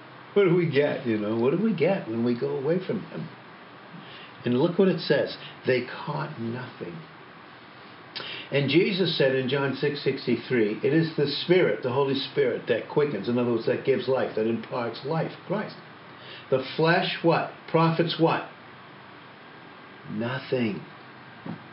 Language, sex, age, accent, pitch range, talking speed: English, male, 60-79, American, 130-175 Hz, 155 wpm